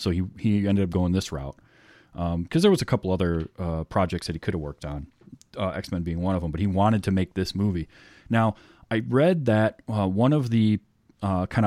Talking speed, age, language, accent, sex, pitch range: 230 wpm, 30-49, English, American, male, 90-115 Hz